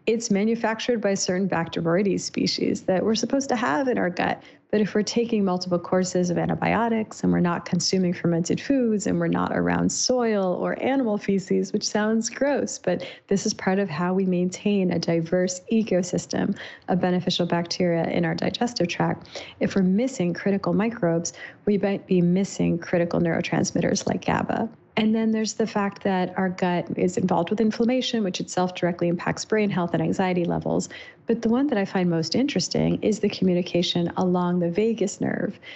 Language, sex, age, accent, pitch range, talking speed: English, female, 30-49, American, 180-225 Hz, 180 wpm